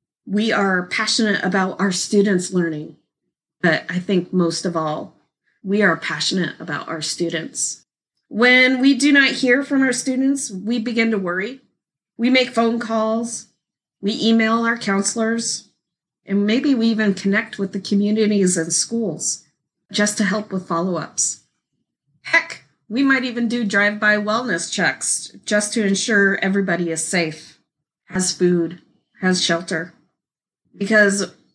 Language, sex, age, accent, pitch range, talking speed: English, female, 30-49, American, 175-230 Hz, 140 wpm